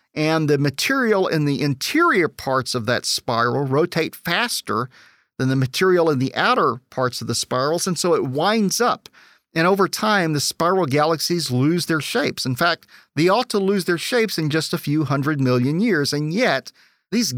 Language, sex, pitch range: English, male, 135-190 Hz